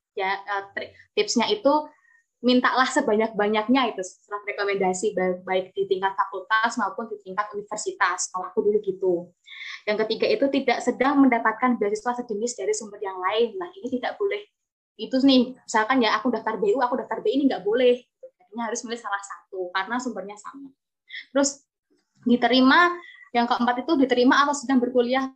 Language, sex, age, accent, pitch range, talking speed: Indonesian, female, 20-39, native, 205-260 Hz, 155 wpm